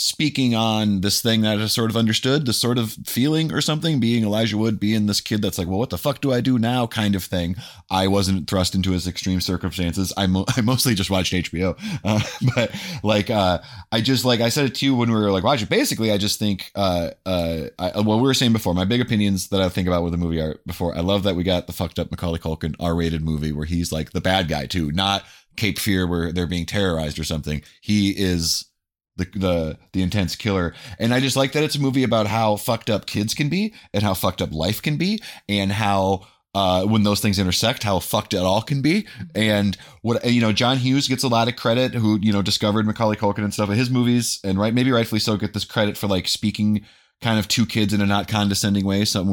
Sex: male